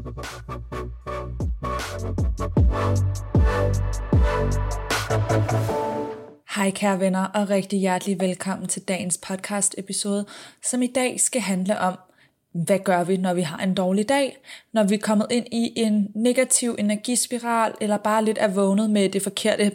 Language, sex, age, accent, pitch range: Danish, female, 20-39, native, 175-215 Hz